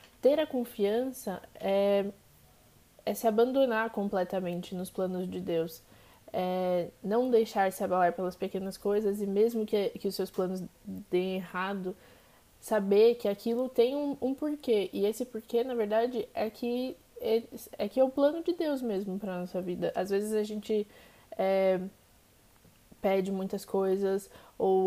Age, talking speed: 20-39, 155 wpm